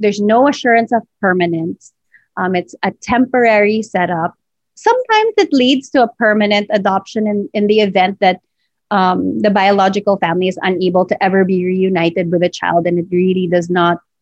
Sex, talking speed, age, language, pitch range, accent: female, 170 wpm, 30-49, English, 180-210 Hz, Filipino